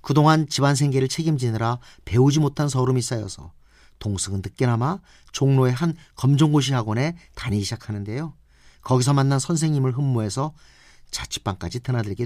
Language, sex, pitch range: Korean, male, 100-150 Hz